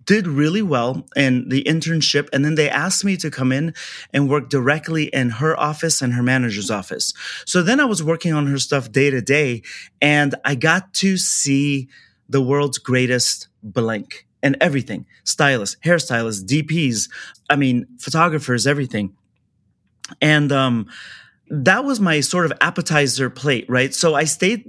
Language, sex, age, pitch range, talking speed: English, male, 30-49, 135-180 Hz, 160 wpm